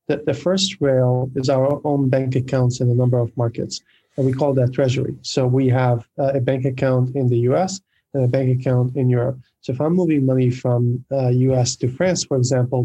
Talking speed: 220 wpm